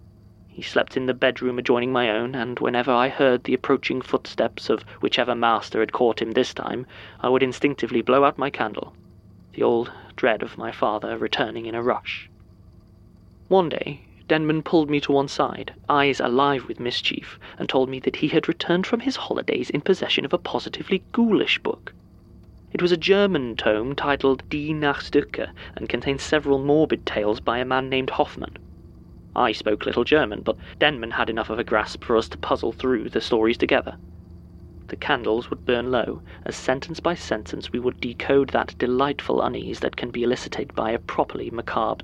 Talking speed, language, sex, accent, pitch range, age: 185 wpm, English, male, British, 100-140 Hz, 30-49